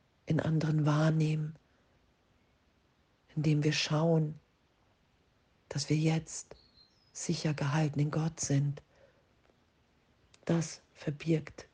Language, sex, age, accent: German, female, 50-69, German